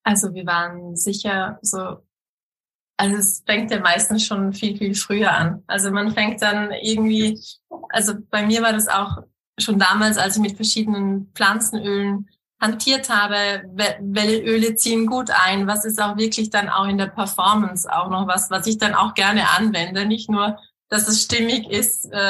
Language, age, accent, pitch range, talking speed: German, 20-39, German, 200-225 Hz, 170 wpm